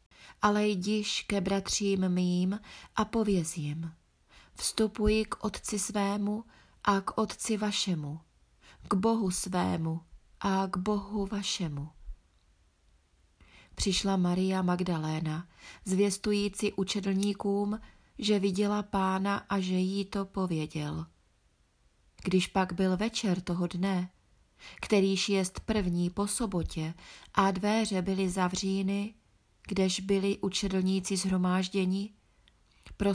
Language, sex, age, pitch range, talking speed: Czech, female, 30-49, 175-205 Hz, 100 wpm